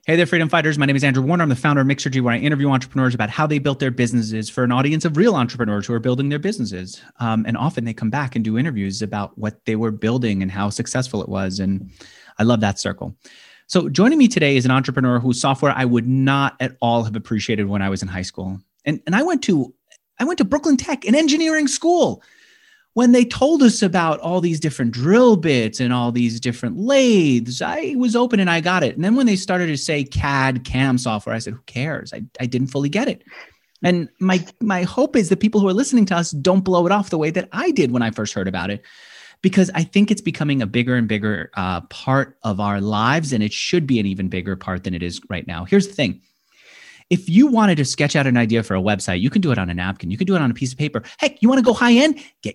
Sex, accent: male, American